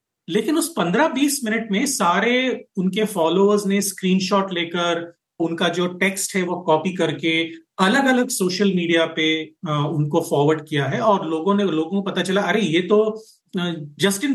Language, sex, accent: Hindi, male, native